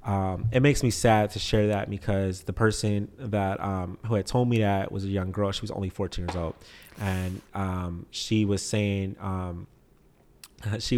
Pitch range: 95-115 Hz